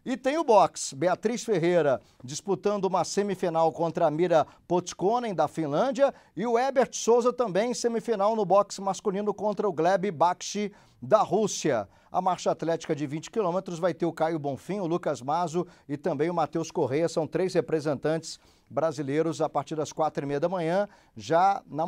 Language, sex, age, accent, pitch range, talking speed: Portuguese, male, 50-69, Brazilian, 160-195 Hz, 175 wpm